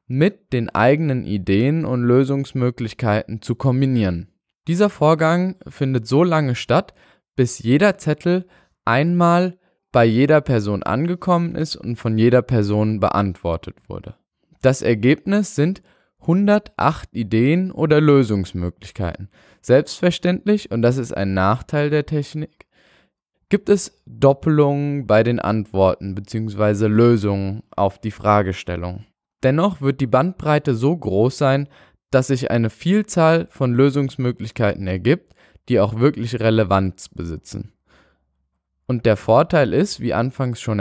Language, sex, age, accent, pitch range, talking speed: German, male, 20-39, German, 105-150 Hz, 120 wpm